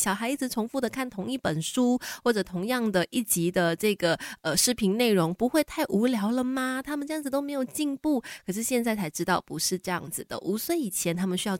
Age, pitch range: 20-39, 175-235 Hz